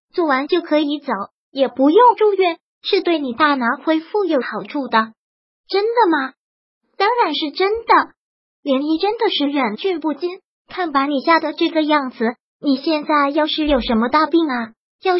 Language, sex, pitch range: Chinese, male, 260-330 Hz